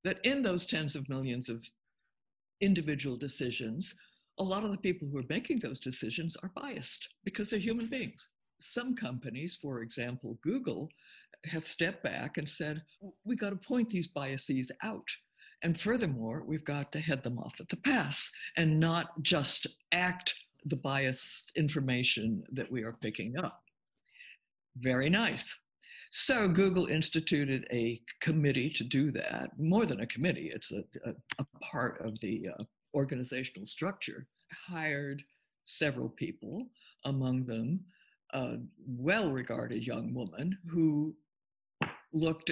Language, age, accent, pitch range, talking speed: English, 60-79, American, 130-195 Hz, 140 wpm